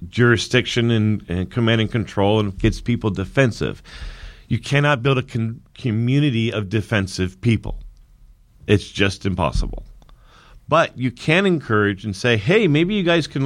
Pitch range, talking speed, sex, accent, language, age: 100-130 Hz, 145 wpm, male, American, English, 40-59